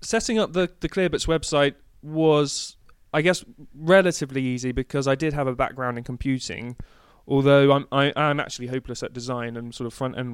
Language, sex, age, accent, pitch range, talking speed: English, male, 20-39, British, 120-140 Hz, 185 wpm